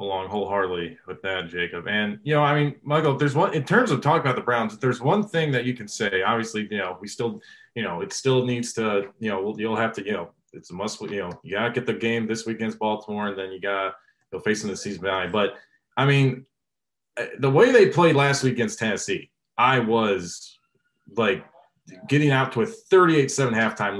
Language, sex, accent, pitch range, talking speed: English, male, American, 110-140 Hz, 225 wpm